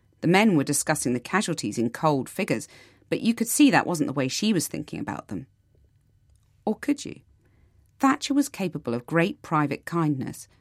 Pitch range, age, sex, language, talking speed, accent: 125-175 Hz, 40-59, female, English, 180 wpm, British